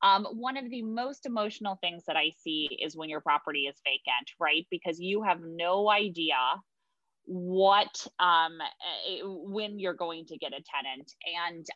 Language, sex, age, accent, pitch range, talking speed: English, female, 20-39, American, 160-205 Hz, 165 wpm